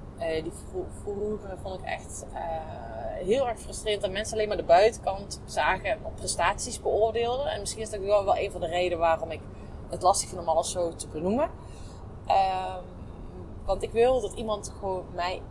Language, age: Dutch, 30-49